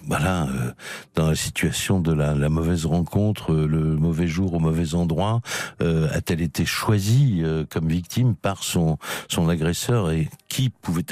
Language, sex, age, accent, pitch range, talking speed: French, male, 60-79, French, 85-115 Hz, 165 wpm